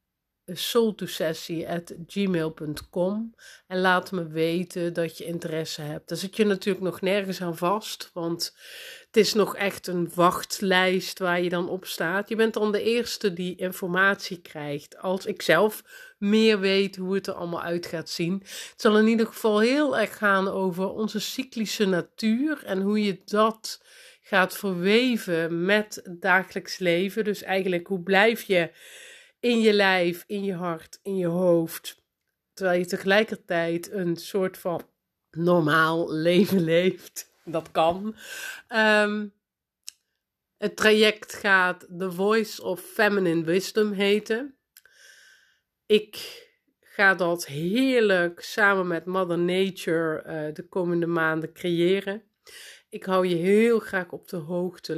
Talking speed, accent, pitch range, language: 140 wpm, Dutch, 170-210 Hz, Dutch